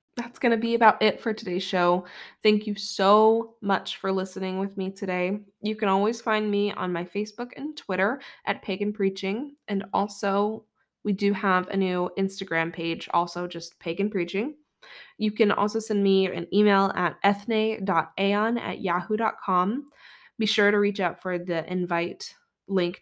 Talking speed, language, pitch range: 165 wpm, English, 180-215 Hz